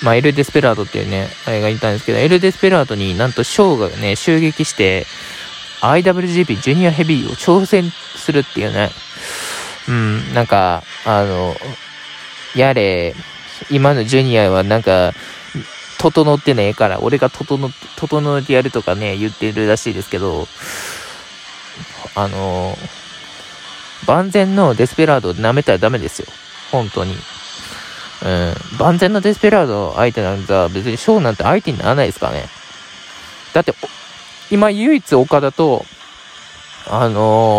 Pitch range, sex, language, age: 105-150 Hz, male, Japanese, 20-39